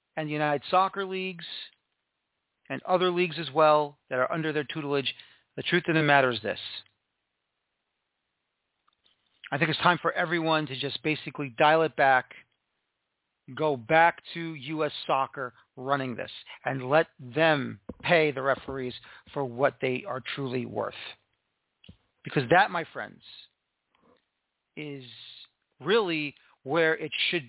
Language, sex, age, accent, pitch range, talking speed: English, male, 40-59, American, 140-175 Hz, 135 wpm